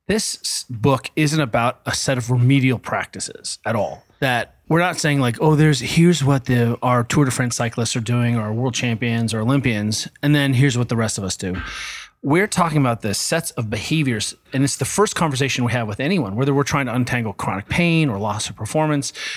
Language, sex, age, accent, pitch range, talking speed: English, male, 30-49, American, 120-155 Hz, 215 wpm